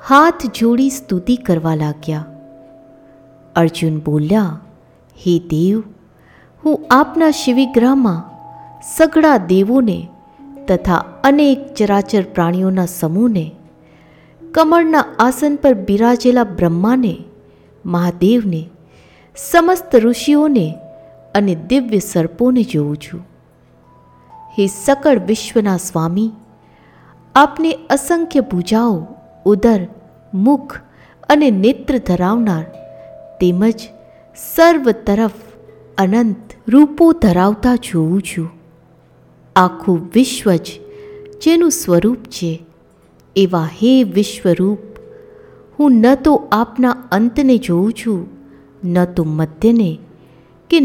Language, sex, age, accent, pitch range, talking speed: Gujarati, female, 60-79, native, 170-260 Hz, 90 wpm